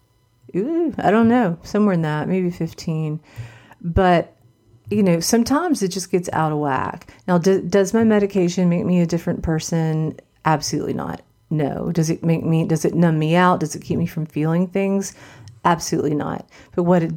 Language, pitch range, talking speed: English, 145-180 Hz, 180 wpm